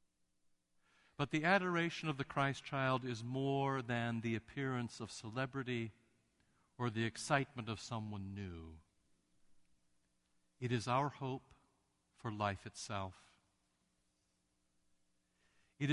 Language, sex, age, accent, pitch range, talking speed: English, male, 60-79, American, 85-130 Hz, 105 wpm